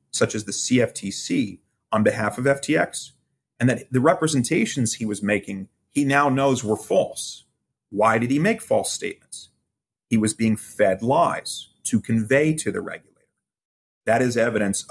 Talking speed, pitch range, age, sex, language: 155 wpm, 105-130 Hz, 30-49, male, English